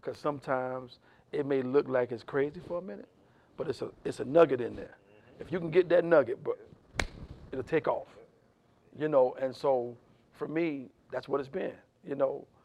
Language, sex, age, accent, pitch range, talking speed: English, male, 50-69, American, 120-150 Hz, 195 wpm